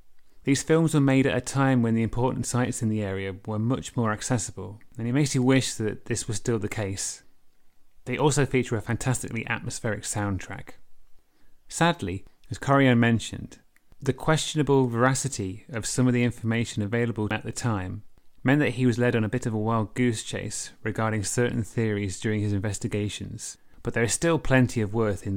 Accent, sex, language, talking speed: British, male, English, 185 wpm